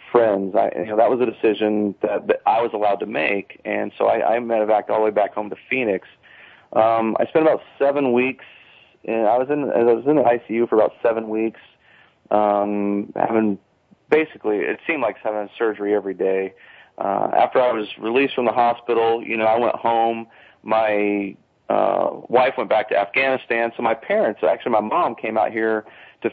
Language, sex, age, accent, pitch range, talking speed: English, male, 40-59, American, 100-115 Hz, 200 wpm